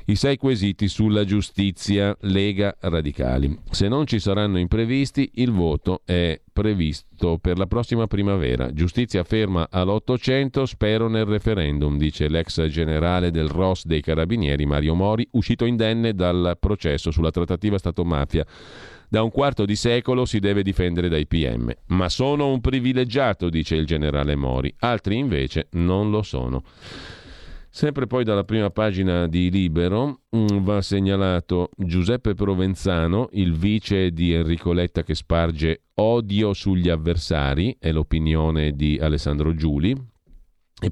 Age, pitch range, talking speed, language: 40-59, 80-105 Hz, 135 wpm, Italian